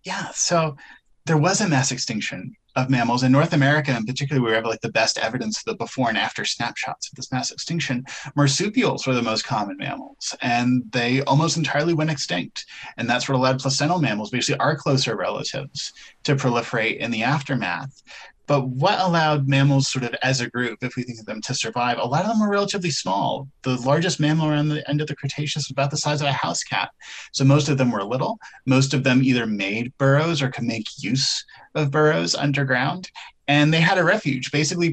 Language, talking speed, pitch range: English, 210 wpm, 125-150 Hz